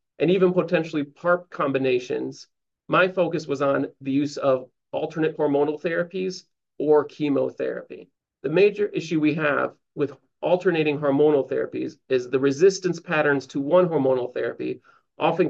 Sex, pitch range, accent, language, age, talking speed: male, 135-170 Hz, American, English, 40-59, 135 wpm